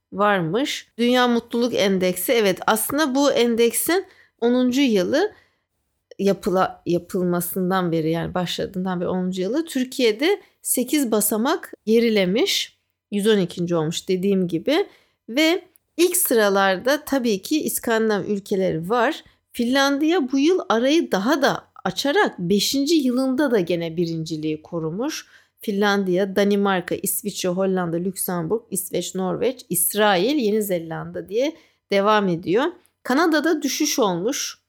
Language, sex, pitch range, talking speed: English, female, 185-260 Hz, 110 wpm